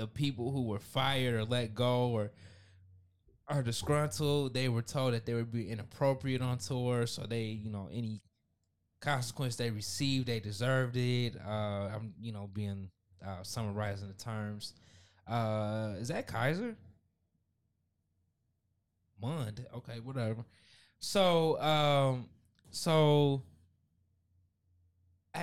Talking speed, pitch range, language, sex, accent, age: 125 wpm, 105-135 Hz, English, male, American, 20-39